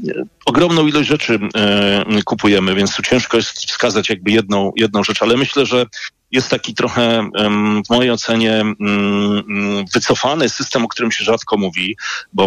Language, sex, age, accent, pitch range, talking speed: Polish, male, 40-59, native, 105-125 Hz, 145 wpm